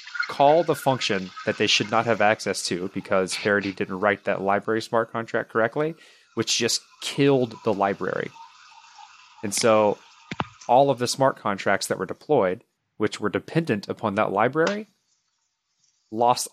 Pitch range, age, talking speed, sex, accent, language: 100-125 Hz, 30-49, 150 wpm, male, American, English